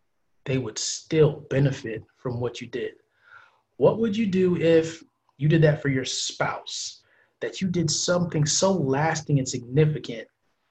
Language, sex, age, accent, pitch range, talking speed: English, male, 20-39, American, 125-155 Hz, 150 wpm